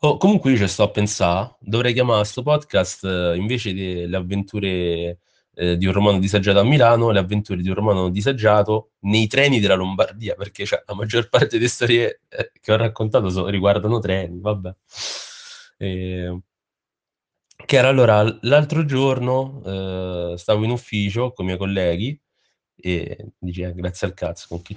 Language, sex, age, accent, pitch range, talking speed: Italian, male, 30-49, native, 95-115 Hz, 165 wpm